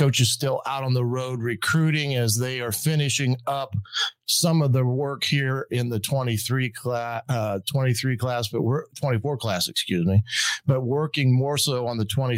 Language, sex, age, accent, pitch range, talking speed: English, male, 40-59, American, 115-135 Hz, 180 wpm